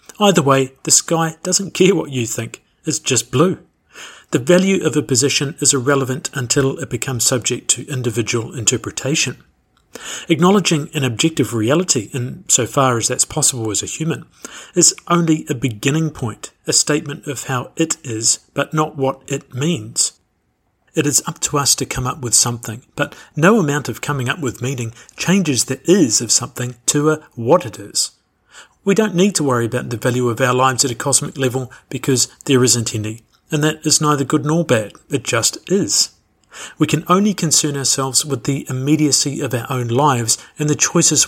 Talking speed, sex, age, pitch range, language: 185 wpm, male, 50-69, 125-155 Hz, English